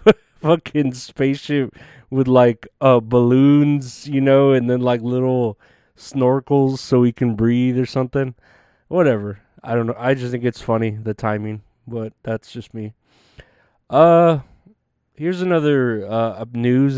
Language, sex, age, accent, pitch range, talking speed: English, male, 20-39, American, 115-135 Hz, 140 wpm